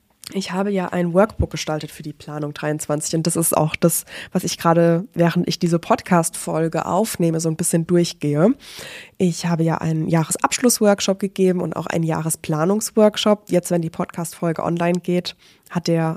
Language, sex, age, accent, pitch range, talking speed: German, female, 20-39, German, 165-185 Hz, 170 wpm